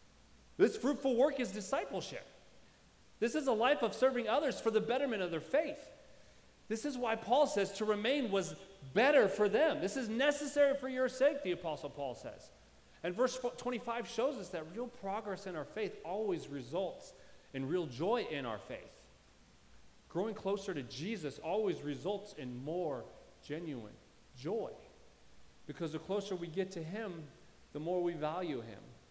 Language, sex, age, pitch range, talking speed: English, male, 40-59, 135-225 Hz, 165 wpm